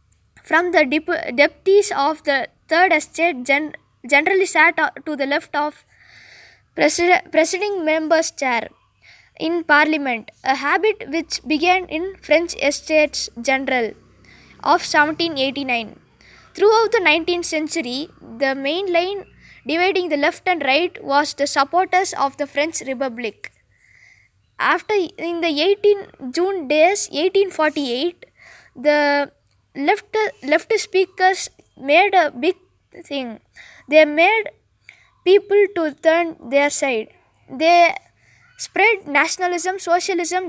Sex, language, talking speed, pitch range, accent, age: female, Tamil, 110 wpm, 285-365 Hz, native, 20-39